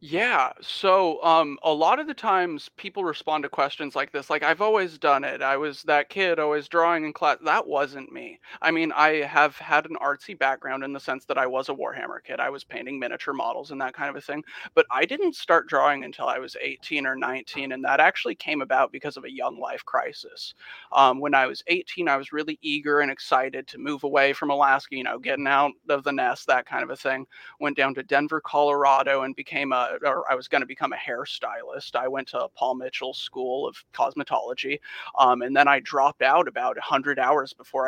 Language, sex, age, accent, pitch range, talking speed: English, male, 30-49, American, 135-160 Hz, 225 wpm